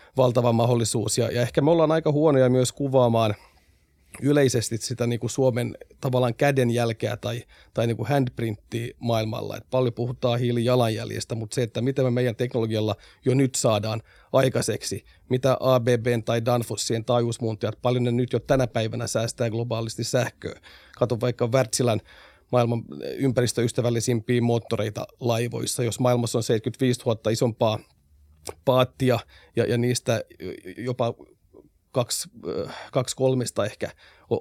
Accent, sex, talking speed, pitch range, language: native, male, 125 wpm, 115-125 Hz, Finnish